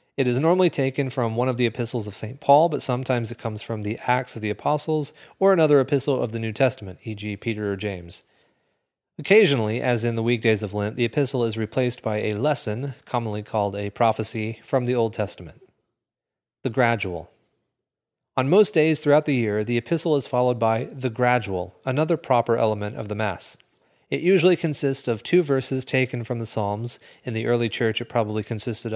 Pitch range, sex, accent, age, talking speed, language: 110-140 Hz, male, American, 30-49, 195 wpm, English